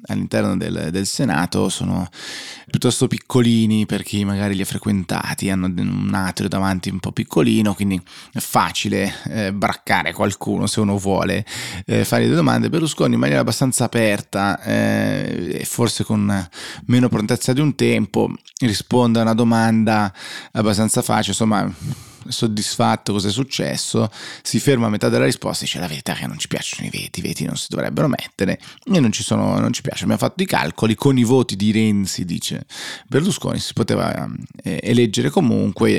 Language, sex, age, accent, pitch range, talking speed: Italian, male, 20-39, native, 100-120 Hz, 175 wpm